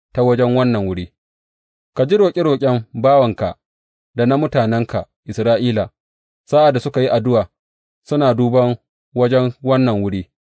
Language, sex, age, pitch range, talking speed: English, male, 30-49, 100-140 Hz, 115 wpm